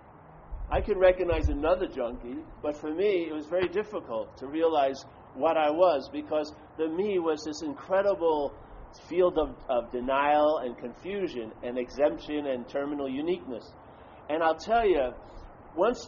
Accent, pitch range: American, 140-195 Hz